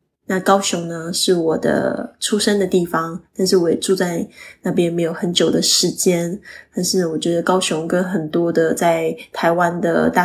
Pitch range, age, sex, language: 175-205 Hz, 10-29, female, Chinese